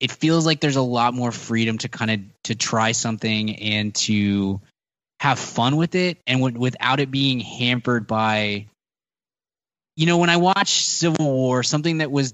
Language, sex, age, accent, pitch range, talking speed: English, male, 20-39, American, 115-145 Hz, 180 wpm